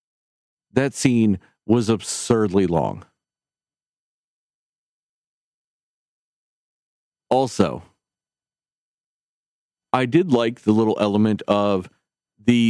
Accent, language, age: American, English, 40-59